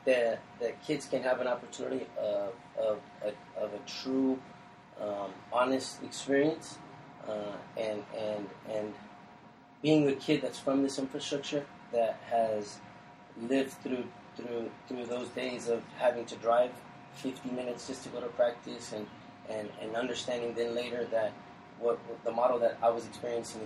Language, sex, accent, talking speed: English, male, American, 155 wpm